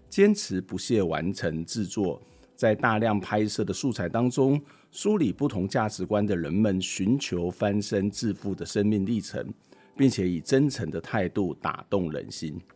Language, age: Chinese, 50-69